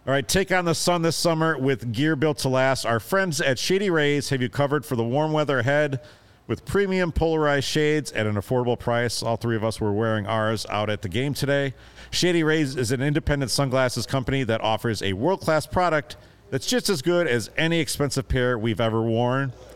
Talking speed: 210 wpm